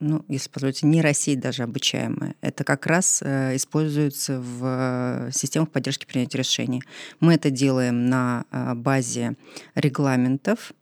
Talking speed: 135 wpm